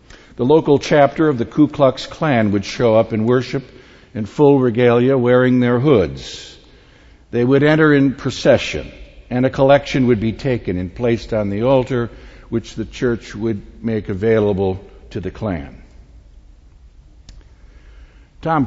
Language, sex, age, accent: English, male, 60-79, American